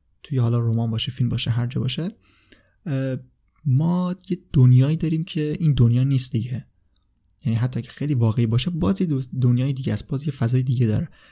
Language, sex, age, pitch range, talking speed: Persian, male, 20-39, 115-140 Hz, 175 wpm